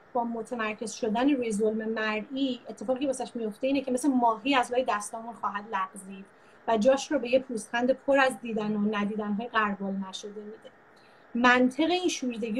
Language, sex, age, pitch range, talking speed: Persian, female, 30-49, 210-255 Hz, 165 wpm